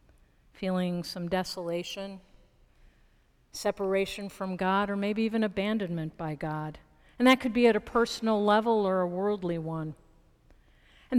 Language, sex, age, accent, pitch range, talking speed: English, female, 50-69, American, 190-245 Hz, 135 wpm